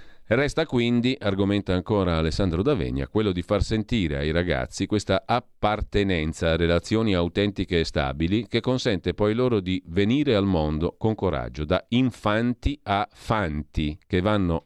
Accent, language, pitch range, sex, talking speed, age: native, Italian, 85-110 Hz, male, 145 wpm, 40-59